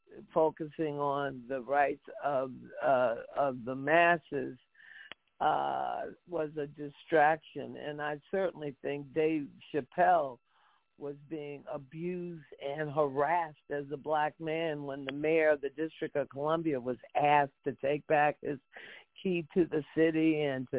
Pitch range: 145-165 Hz